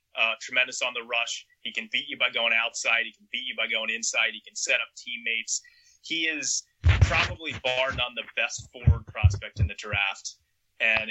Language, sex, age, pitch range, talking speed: English, male, 30-49, 105-140 Hz, 200 wpm